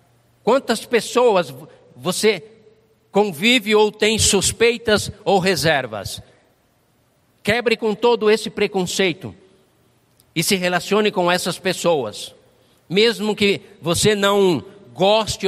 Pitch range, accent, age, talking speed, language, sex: 155-215 Hz, Brazilian, 50-69, 95 wpm, Portuguese, male